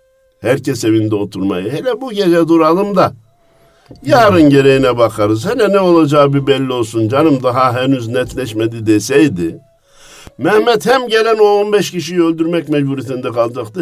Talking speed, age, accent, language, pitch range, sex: 135 wpm, 60-79, native, Turkish, 115-180 Hz, male